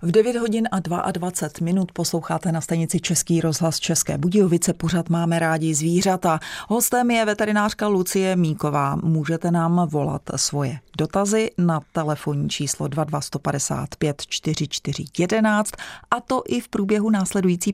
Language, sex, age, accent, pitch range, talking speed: Czech, female, 30-49, native, 155-185 Hz, 135 wpm